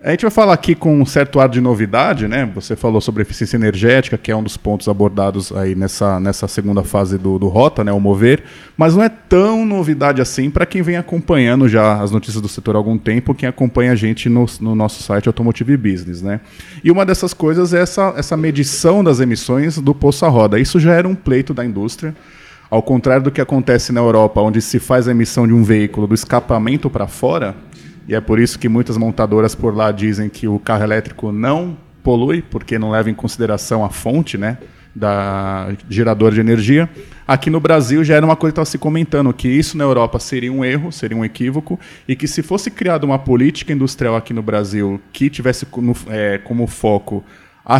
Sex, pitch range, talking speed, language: male, 110-145 Hz, 215 wpm, Portuguese